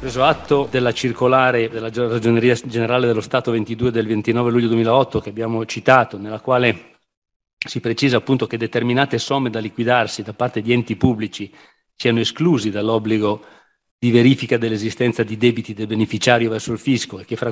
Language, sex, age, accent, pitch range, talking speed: Italian, male, 40-59, native, 110-120 Hz, 165 wpm